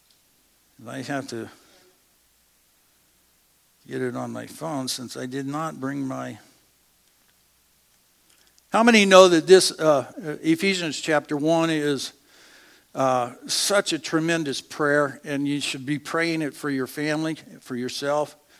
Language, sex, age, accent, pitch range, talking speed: English, male, 60-79, American, 135-170 Hz, 130 wpm